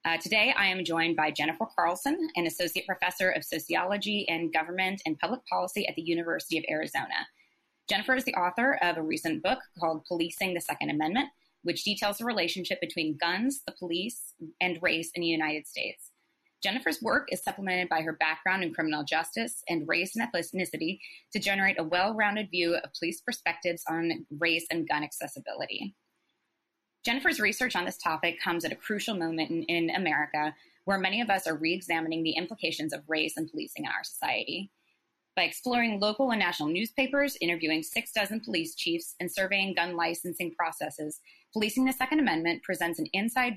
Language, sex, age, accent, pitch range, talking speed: English, female, 20-39, American, 165-215 Hz, 175 wpm